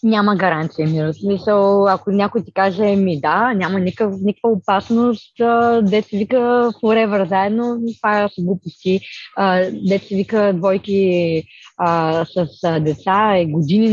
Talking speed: 120 wpm